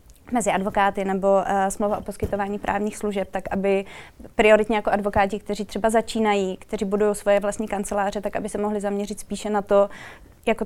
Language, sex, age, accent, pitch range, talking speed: Czech, female, 20-39, native, 195-210 Hz, 175 wpm